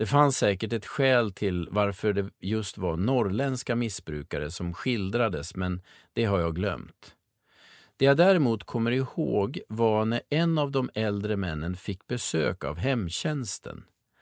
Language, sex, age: Swedish, male, 50-69